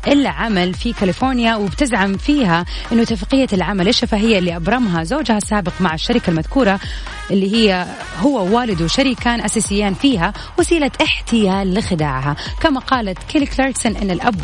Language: Arabic